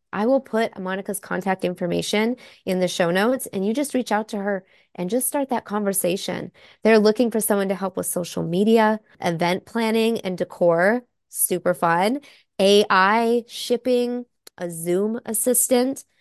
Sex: female